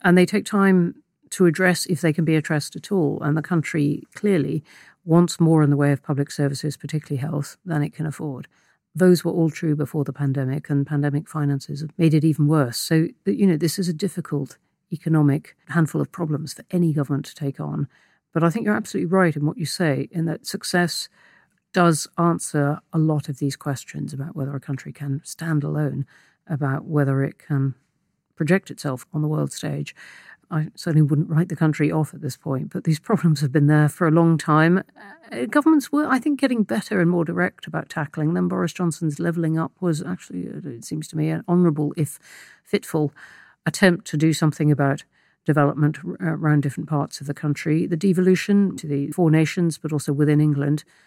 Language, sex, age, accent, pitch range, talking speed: English, female, 50-69, British, 145-175 Hz, 200 wpm